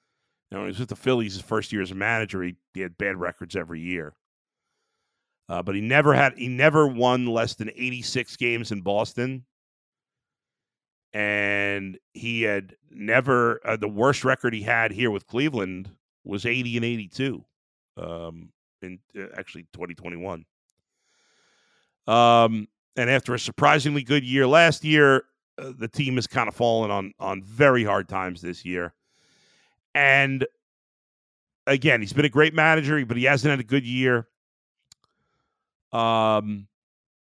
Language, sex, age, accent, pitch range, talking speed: English, male, 40-59, American, 100-135 Hz, 155 wpm